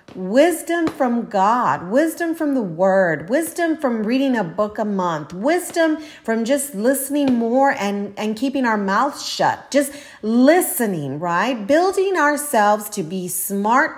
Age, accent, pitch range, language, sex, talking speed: 40-59, American, 185-260 Hz, English, female, 140 wpm